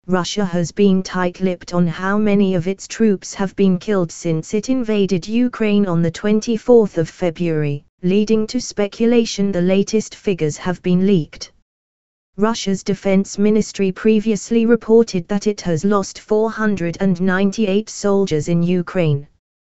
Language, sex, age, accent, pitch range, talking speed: English, female, 20-39, British, 170-215 Hz, 130 wpm